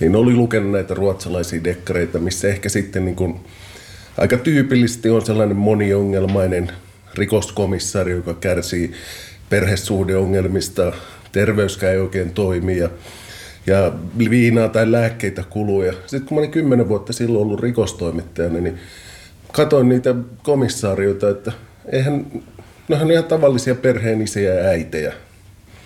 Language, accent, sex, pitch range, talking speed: Finnish, native, male, 90-110 Hz, 110 wpm